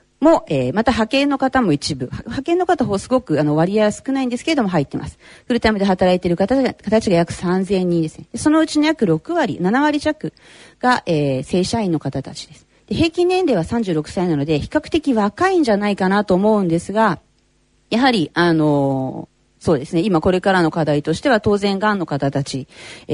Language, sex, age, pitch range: Japanese, female, 40-59, 155-245 Hz